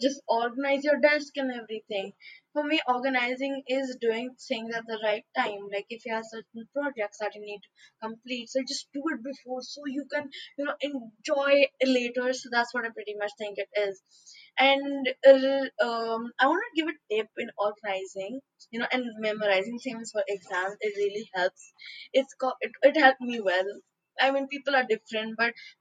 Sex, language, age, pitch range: female, English, 20-39, 215-275 Hz